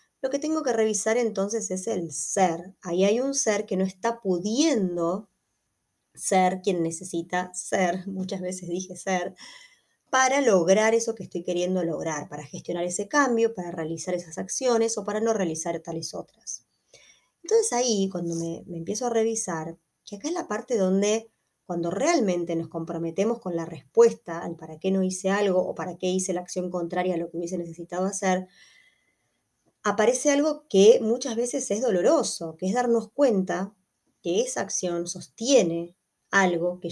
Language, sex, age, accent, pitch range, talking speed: Spanish, female, 20-39, Argentinian, 175-225 Hz, 165 wpm